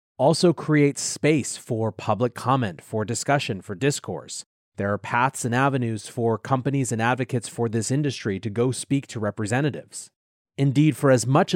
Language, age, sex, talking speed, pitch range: English, 30-49, male, 160 wpm, 115-150 Hz